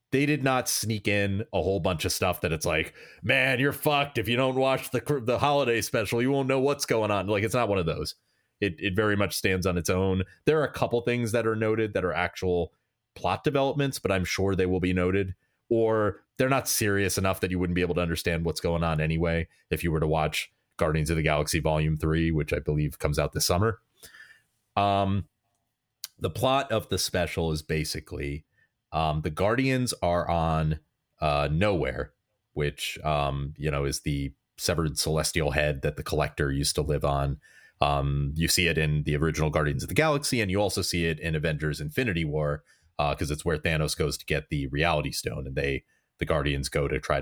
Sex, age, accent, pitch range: male, 30-49, American, 80-110 Hz